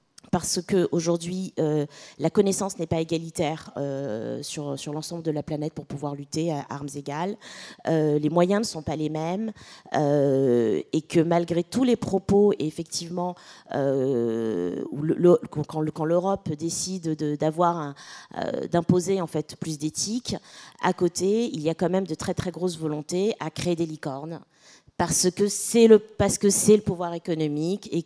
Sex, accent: female, French